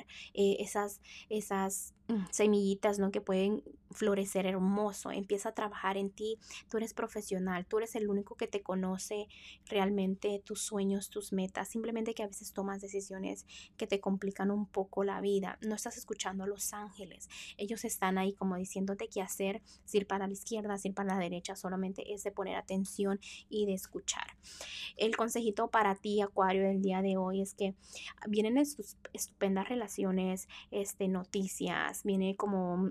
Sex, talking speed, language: female, 170 wpm, Spanish